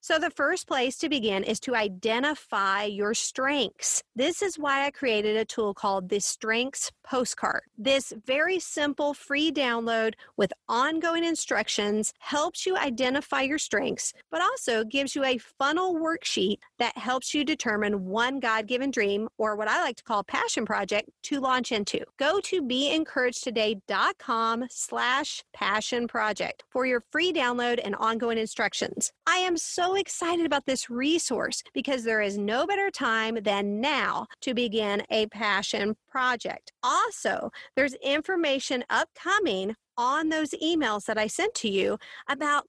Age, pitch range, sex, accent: 40-59, 220-295 Hz, female, American